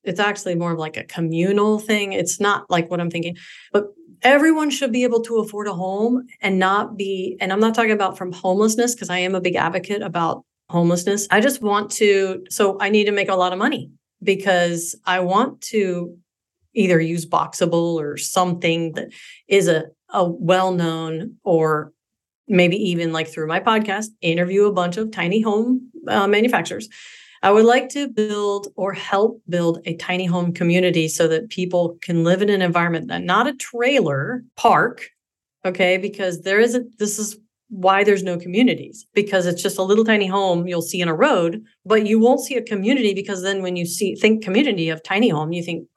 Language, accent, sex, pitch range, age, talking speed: English, American, female, 175-210 Hz, 40-59, 195 wpm